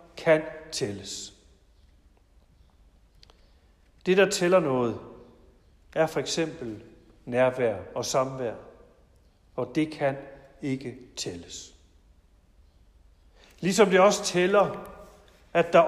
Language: Danish